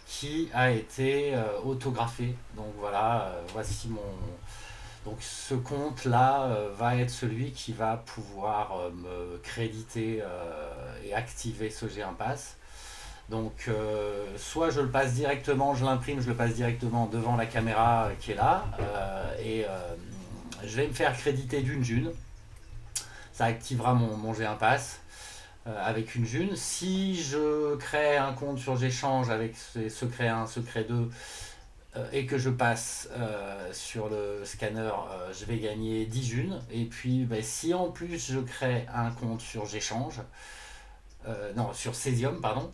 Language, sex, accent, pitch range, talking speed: French, male, French, 110-130 Hz, 155 wpm